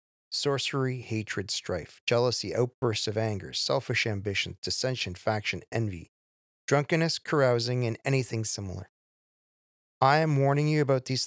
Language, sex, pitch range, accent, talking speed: English, male, 105-130 Hz, American, 120 wpm